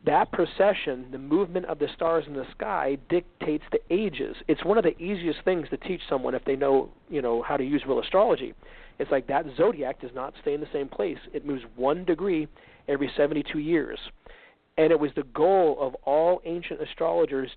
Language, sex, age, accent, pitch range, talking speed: English, male, 40-59, American, 135-160 Hz, 200 wpm